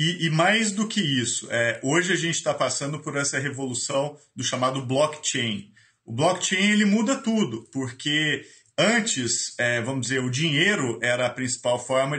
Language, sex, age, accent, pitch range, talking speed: Portuguese, male, 40-59, Brazilian, 125-165 Hz, 160 wpm